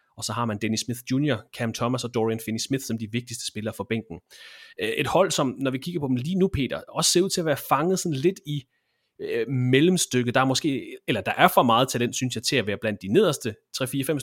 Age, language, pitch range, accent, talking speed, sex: 30-49, Danish, 120-150 Hz, native, 255 wpm, male